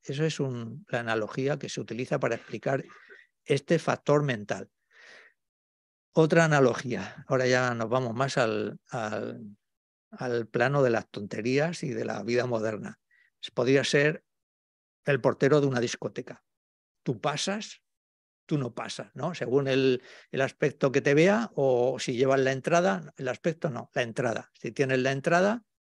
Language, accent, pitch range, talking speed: Spanish, Spanish, 120-155 Hz, 155 wpm